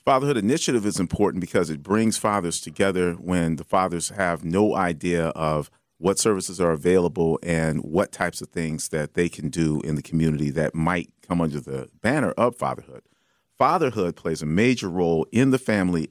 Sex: male